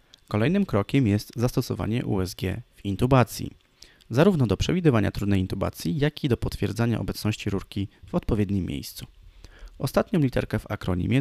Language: Polish